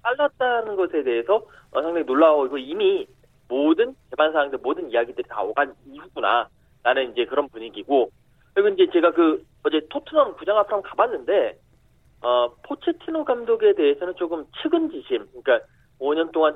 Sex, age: male, 30-49